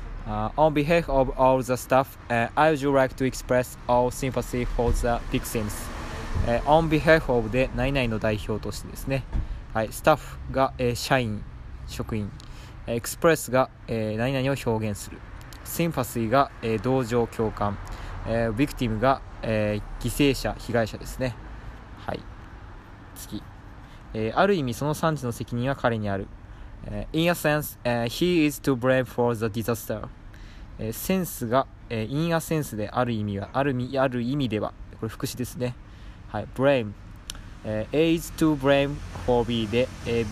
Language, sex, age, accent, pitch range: Japanese, male, 20-39, native, 105-130 Hz